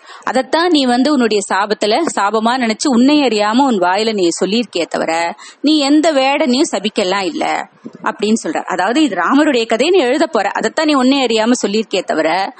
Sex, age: female, 20-39